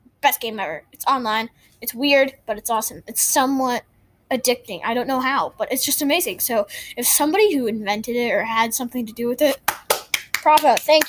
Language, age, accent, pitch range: English, 10-29, American, 220-290 Hz